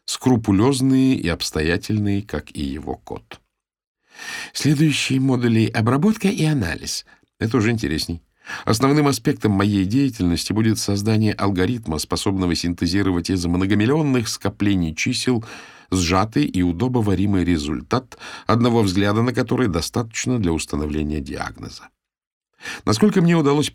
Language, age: Russian, 50-69